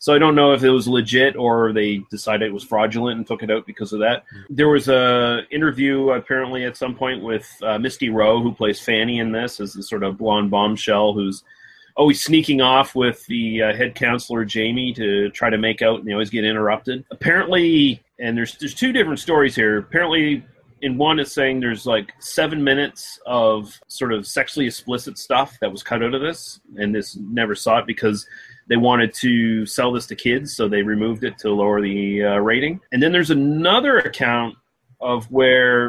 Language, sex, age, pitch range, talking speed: English, male, 30-49, 110-145 Hz, 205 wpm